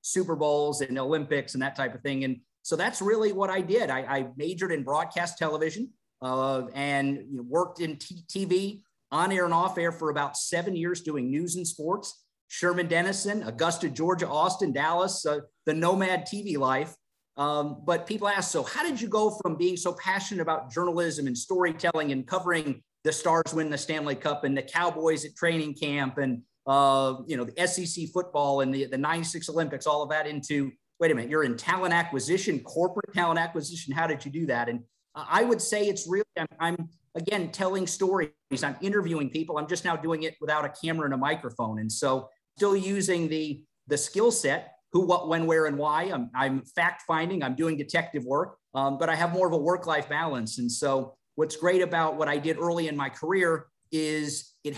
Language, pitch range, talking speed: English, 140-180 Hz, 200 wpm